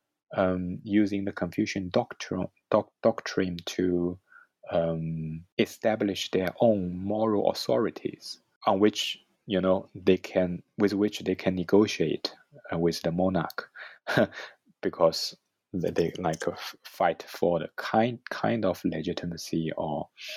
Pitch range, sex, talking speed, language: 85-110 Hz, male, 125 wpm, English